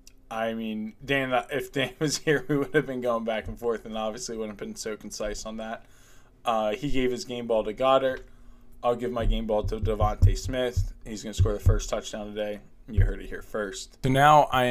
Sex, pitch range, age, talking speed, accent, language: male, 105-125 Hz, 20-39, 225 wpm, American, English